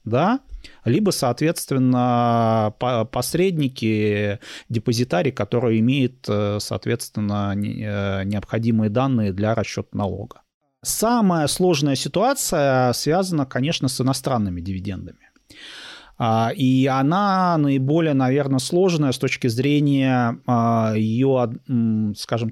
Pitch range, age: 115-150 Hz, 30-49